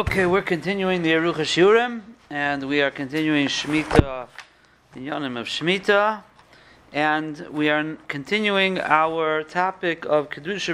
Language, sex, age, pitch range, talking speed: English, male, 40-59, 140-180 Hz, 130 wpm